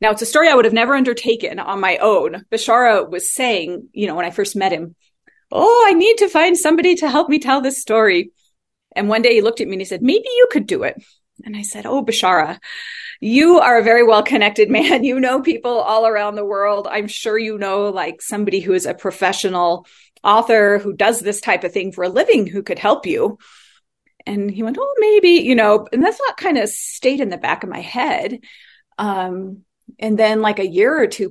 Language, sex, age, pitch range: English, female, 30-49, 195-255 Hz